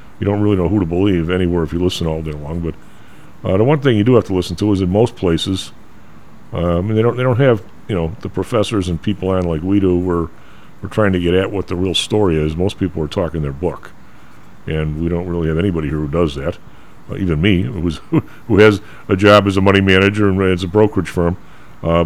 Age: 50-69